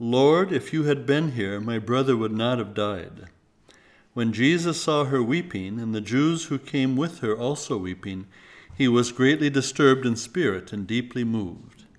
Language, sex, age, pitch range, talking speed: English, male, 60-79, 110-145 Hz, 175 wpm